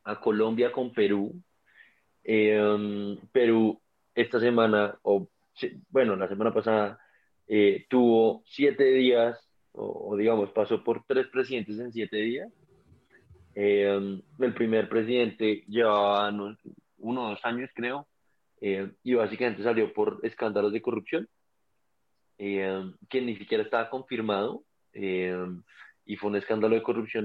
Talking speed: 125 wpm